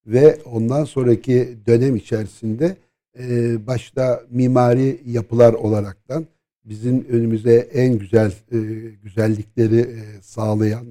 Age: 60-79